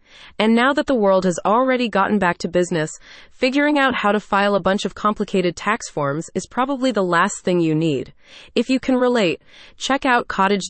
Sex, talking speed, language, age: female, 200 wpm, English, 20-39